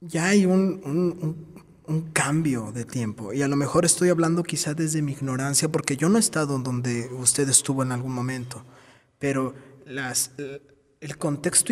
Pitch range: 135-175 Hz